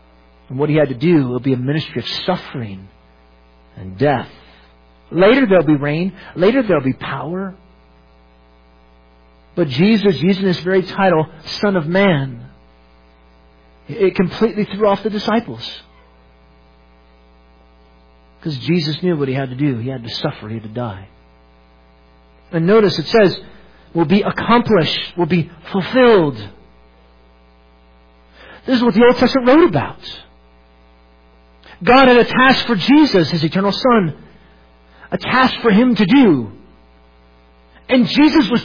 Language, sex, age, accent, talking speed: English, male, 50-69, American, 140 wpm